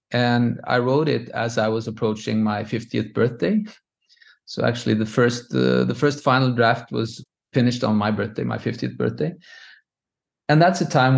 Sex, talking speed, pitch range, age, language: male, 170 wpm, 110-135 Hz, 30-49, English